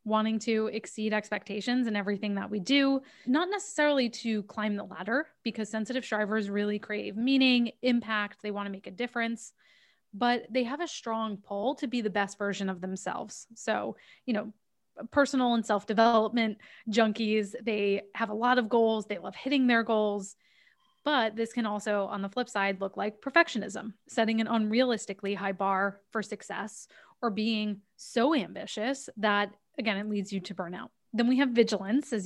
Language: English